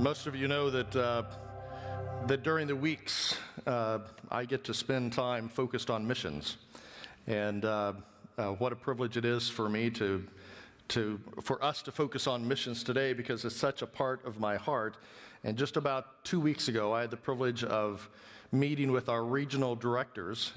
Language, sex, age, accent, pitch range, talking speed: English, male, 50-69, American, 120-140 Hz, 180 wpm